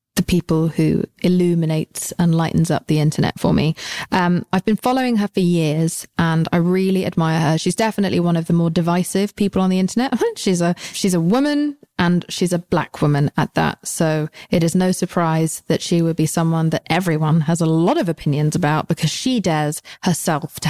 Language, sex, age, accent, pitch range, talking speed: English, female, 20-39, British, 160-190 Hz, 200 wpm